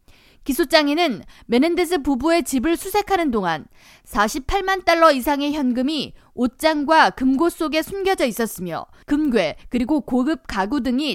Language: Korean